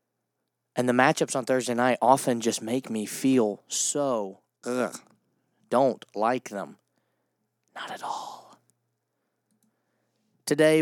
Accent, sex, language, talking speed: American, male, English, 105 wpm